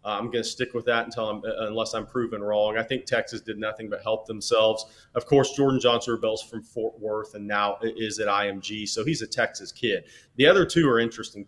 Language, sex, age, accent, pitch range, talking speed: English, male, 30-49, American, 105-120 Hz, 225 wpm